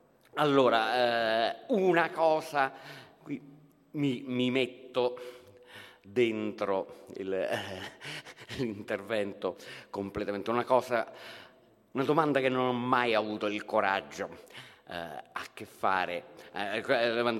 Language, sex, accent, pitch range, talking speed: Italian, male, native, 95-130 Hz, 100 wpm